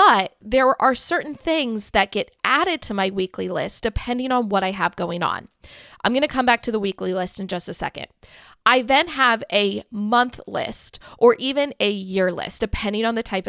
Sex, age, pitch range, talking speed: female, 20-39, 190-255 Hz, 210 wpm